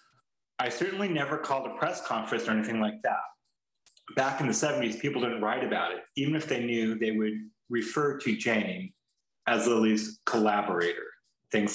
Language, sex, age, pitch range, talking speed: English, male, 30-49, 110-140 Hz, 170 wpm